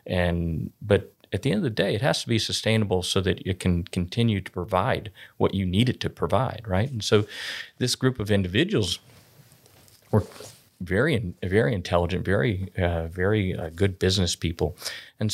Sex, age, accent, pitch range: male, 40-59, American, 90-110 Hz